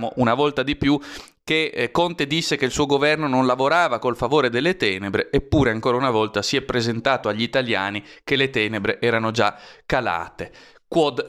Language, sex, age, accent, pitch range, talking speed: Italian, male, 30-49, native, 115-145 Hz, 180 wpm